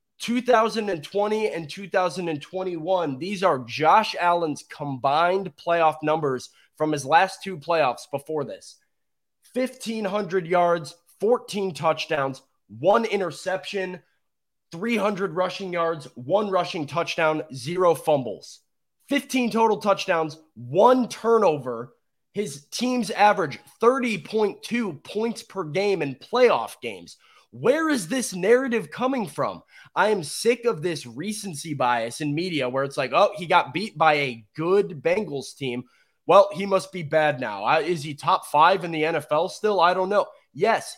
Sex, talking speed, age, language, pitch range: male, 135 wpm, 20-39, English, 150-200 Hz